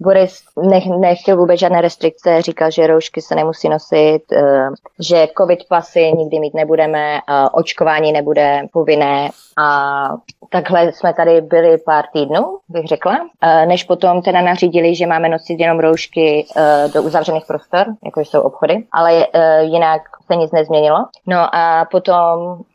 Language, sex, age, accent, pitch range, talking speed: Czech, female, 20-39, native, 150-170 Hz, 135 wpm